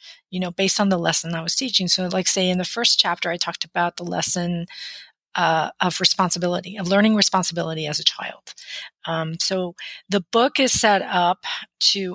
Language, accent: English, American